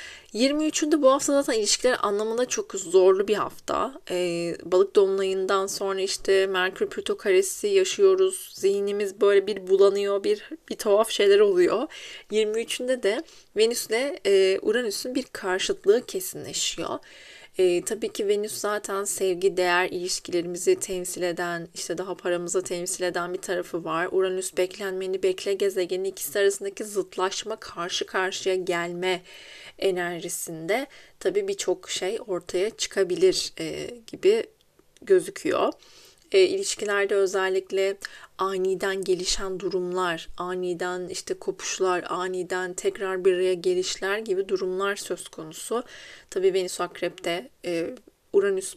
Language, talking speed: Turkish, 120 wpm